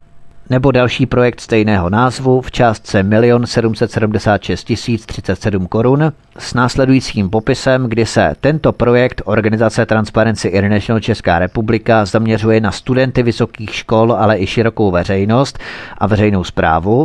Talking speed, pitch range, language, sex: 125 wpm, 110-125 Hz, Czech, male